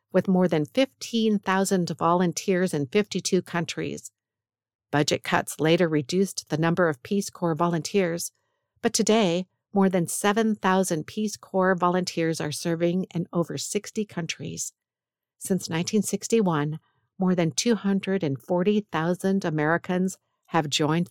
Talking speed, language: 115 wpm, English